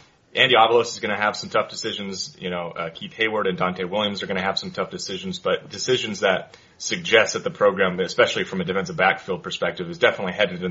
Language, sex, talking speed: English, male, 230 wpm